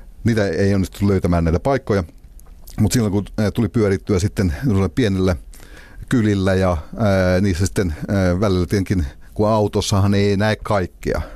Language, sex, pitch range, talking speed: Finnish, male, 90-105 Hz, 135 wpm